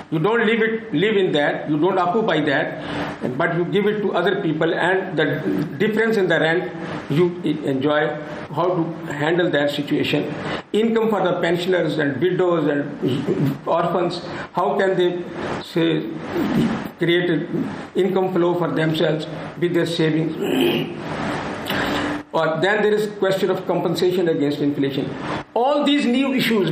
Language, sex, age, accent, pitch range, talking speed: Turkish, male, 50-69, Indian, 160-210 Hz, 145 wpm